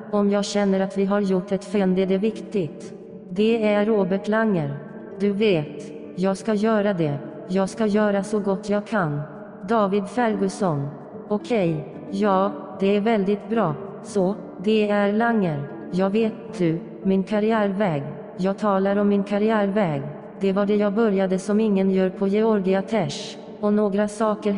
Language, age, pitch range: English, 30-49, 190-215 Hz